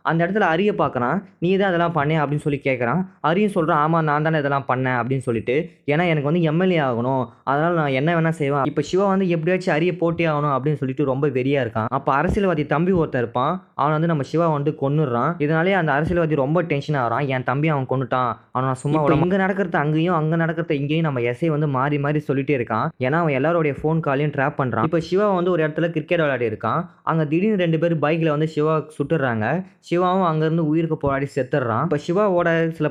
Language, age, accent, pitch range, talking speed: Tamil, 20-39, native, 135-170 Hz, 200 wpm